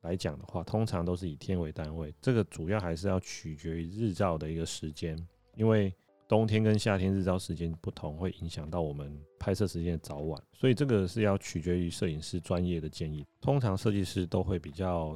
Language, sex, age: Chinese, male, 30-49